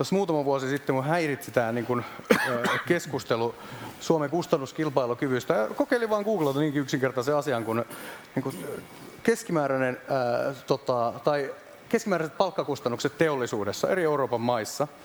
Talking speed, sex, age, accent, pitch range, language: 100 wpm, male, 30-49, native, 135-170 Hz, Finnish